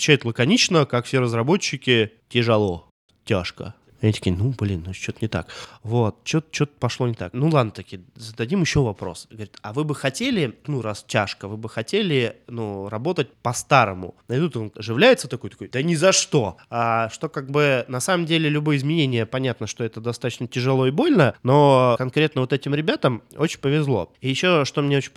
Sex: male